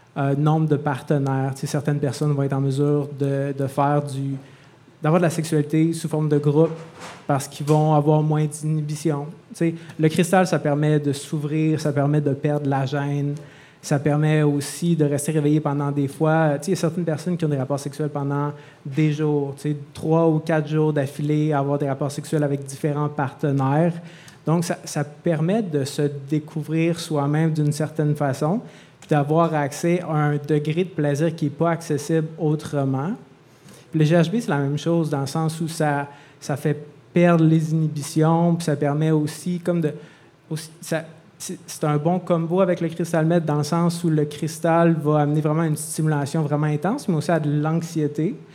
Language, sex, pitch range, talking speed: French, male, 145-165 Hz, 185 wpm